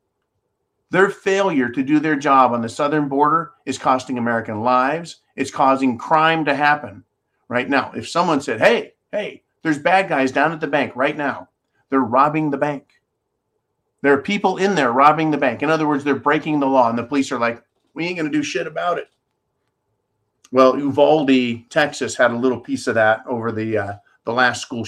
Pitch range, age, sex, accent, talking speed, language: 120-185 Hz, 50-69, male, American, 200 wpm, English